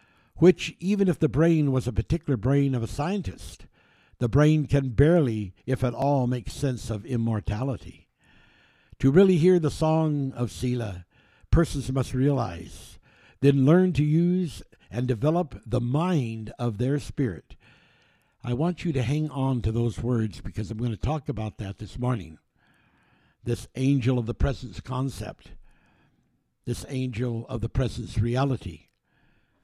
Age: 60-79